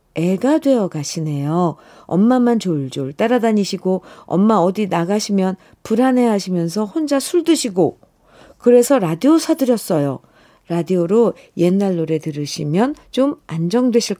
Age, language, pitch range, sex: 50-69, Korean, 155-225 Hz, female